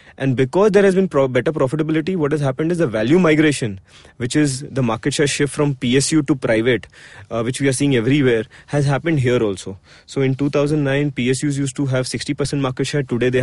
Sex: male